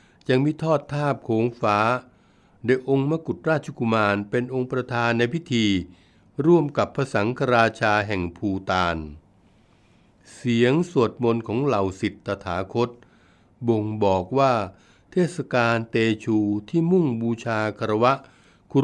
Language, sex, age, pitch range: Thai, male, 60-79, 100-130 Hz